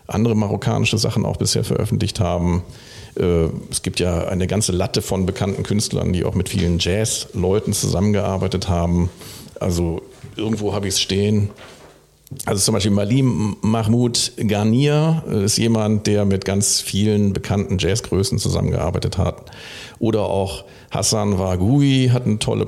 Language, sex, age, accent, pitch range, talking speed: German, male, 50-69, German, 95-120 Hz, 140 wpm